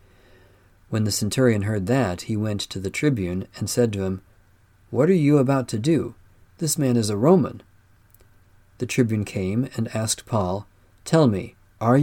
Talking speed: 170 wpm